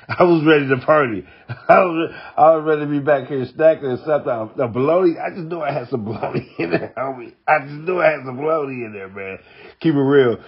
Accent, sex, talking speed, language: American, male, 245 wpm, English